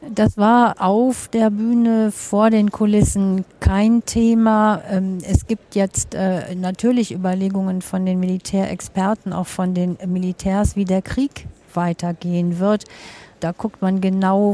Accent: German